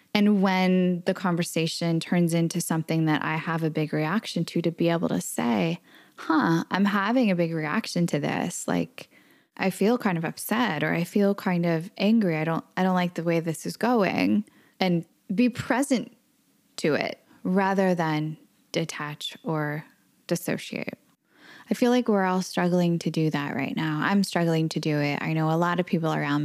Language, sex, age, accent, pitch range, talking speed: English, female, 10-29, American, 155-200 Hz, 185 wpm